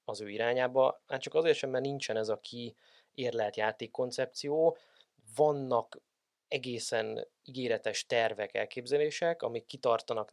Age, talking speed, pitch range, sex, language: 20-39, 115 wpm, 120-165 Hz, male, Hungarian